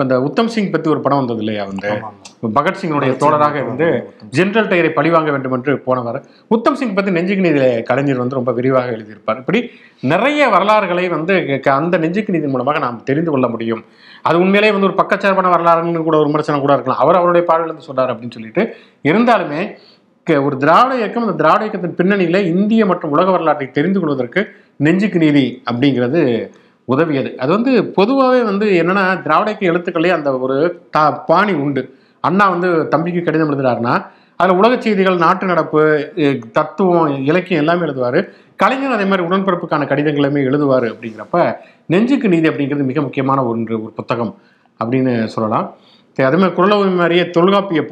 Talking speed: 140 wpm